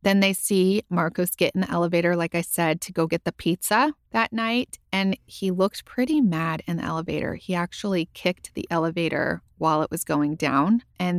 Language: English